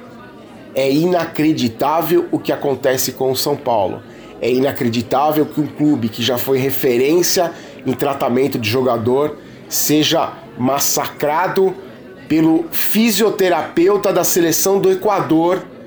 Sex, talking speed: male, 115 wpm